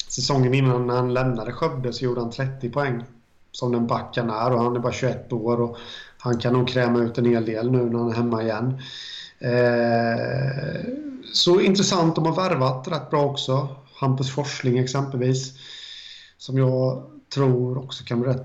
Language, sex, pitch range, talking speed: Swedish, male, 120-135 Hz, 175 wpm